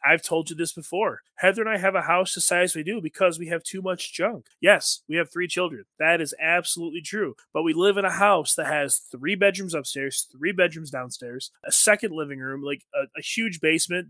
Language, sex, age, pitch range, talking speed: English, male, 20-39, 150-205 Hz, 225 wpm